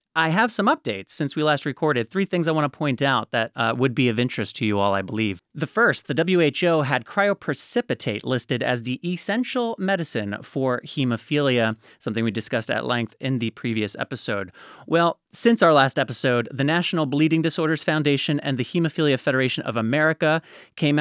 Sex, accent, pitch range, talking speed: male, American, 125-165 Hz, 185 wpm